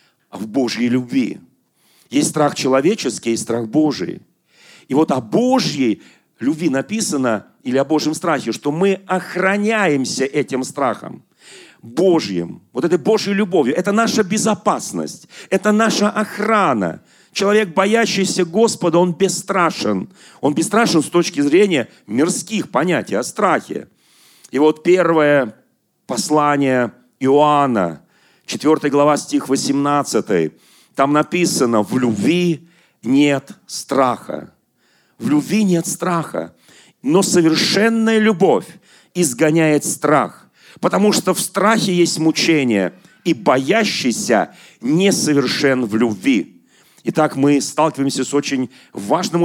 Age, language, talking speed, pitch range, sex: 40-59, Russian, 110 wpm, 140-195 Hz, male